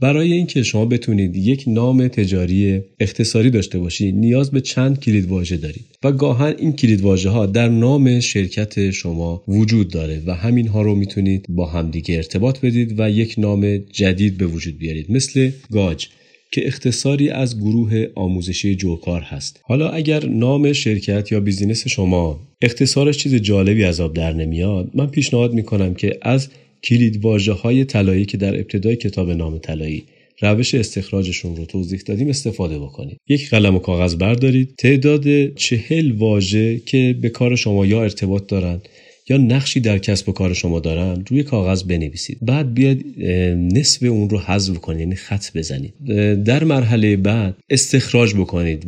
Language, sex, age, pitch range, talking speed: Persian, male, 30-49, 95-130 Hz, 155 wpm